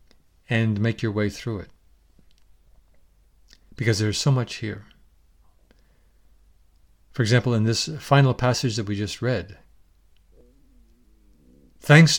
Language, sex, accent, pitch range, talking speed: English, male, American, 80-130 Hz, 115 wpm